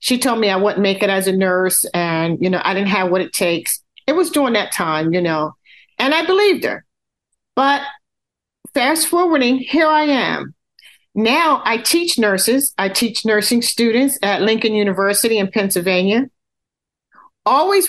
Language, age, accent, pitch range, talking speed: English, 50-69, American, 200-275 Hz, 170 wpm